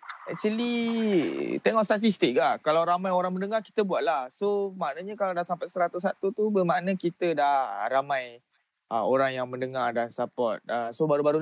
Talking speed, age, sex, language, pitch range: 160 wpm, 20-39, male, Malay, 150-195 Hz